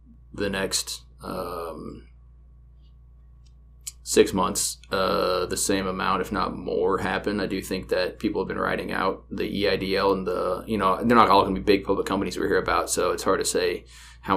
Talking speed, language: 195 wpm, English